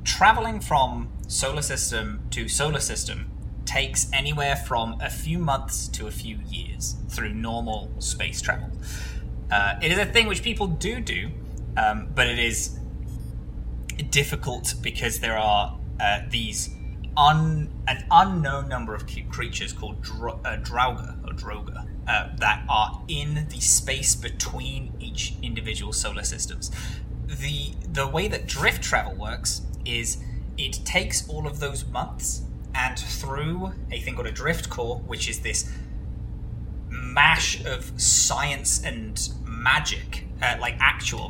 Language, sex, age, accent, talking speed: English, male, 20-39, British, 140 wpm